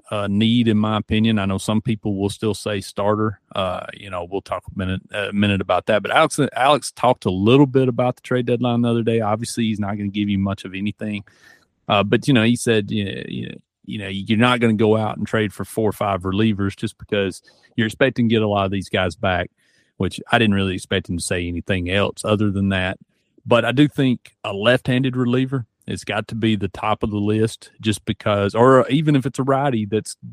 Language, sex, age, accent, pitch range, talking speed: English, male, 40-59, American, 100-115 Hz, 245 wpm